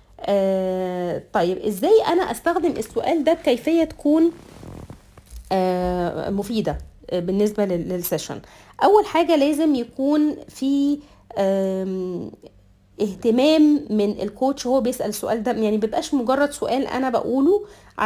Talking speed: 105 wpm